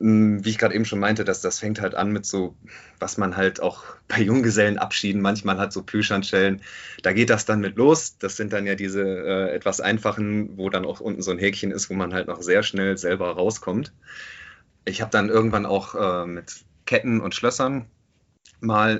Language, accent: German, German